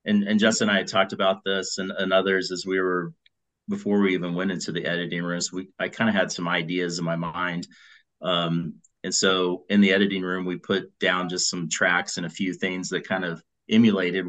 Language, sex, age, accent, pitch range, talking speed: English, male, 30-49, American, 85-95 Hz, 225 wpm